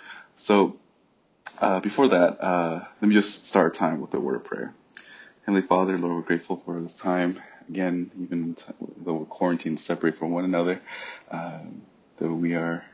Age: 20-39